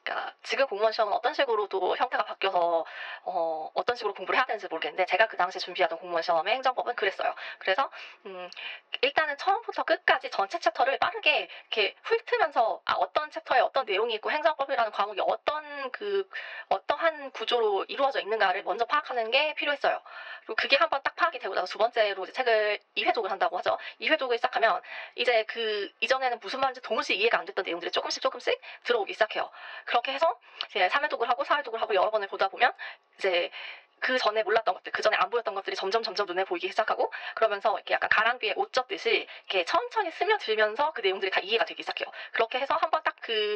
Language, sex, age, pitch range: Korean, female, 20-39, 205-340 Hz